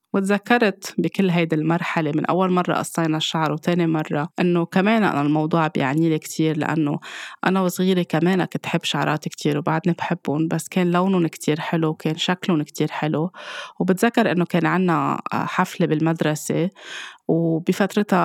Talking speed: 145 wpm